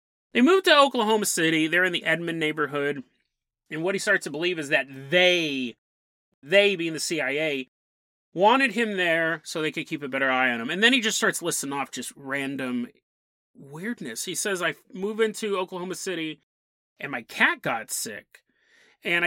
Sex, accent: male, American